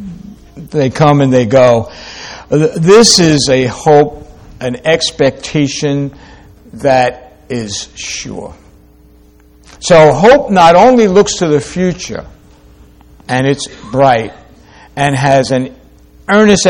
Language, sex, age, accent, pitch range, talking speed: English, male, 60-79, American, 115-155 Hz, 105 wpm